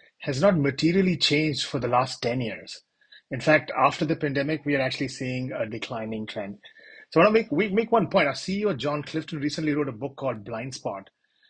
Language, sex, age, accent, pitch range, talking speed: English, male, 30-49, Indian, 125-155 Hz, 200 wpm